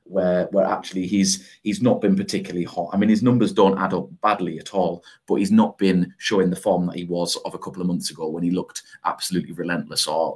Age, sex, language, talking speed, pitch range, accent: 30-49, male, English, 240 wpm, 90-115 Hz, British